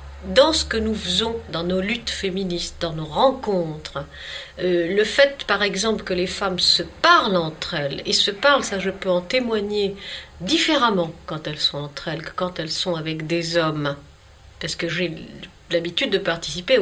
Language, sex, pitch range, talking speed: French, female, 170-250 Hz, 180 wpm